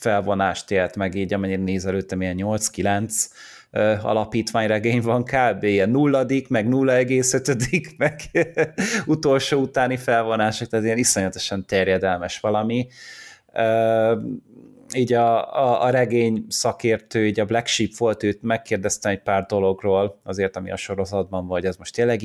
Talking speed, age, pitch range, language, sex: 140 wpm, 30-49, 100-120 Hz, Hungarian, male